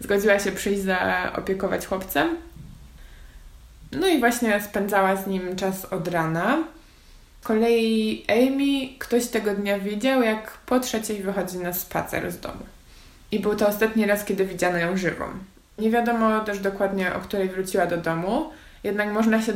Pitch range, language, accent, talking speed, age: 180-215 Hz, Polish, native, 150 wpm, 20-39